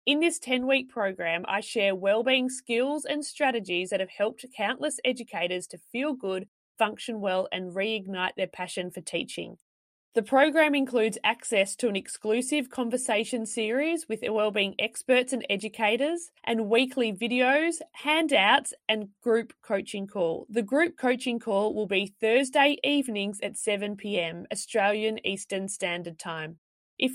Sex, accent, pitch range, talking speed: female, Australian, 195-255 Hz, 140 wpm